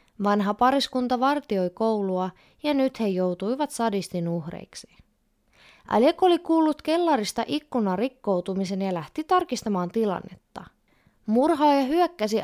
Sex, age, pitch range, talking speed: female, 20-39, 195-280 Hz, 105 wpm